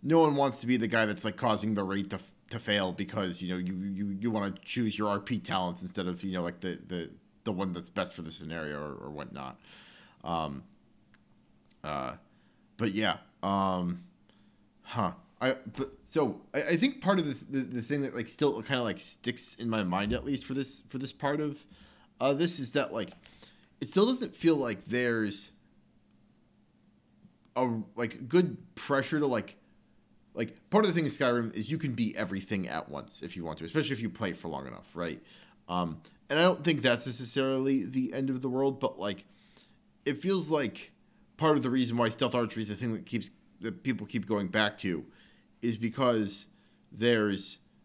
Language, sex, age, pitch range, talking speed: English, male, 30-49, 100-135 Hz, 205 wpm